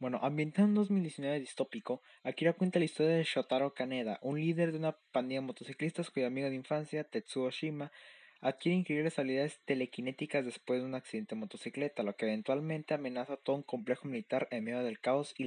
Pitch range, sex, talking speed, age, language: 125-155 Hz, male, 190 wpm, 20-39, Spanish